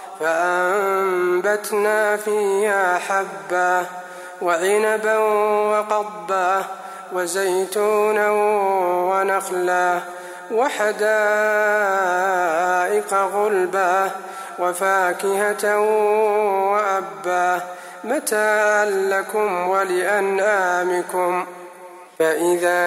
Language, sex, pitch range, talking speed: Arabic, male, 180-210 Hz, 40 wpm